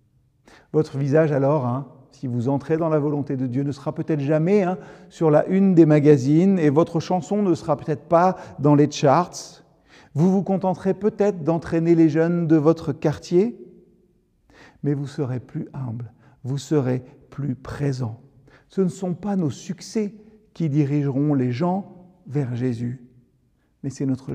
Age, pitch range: 50-69, 125-170 Hz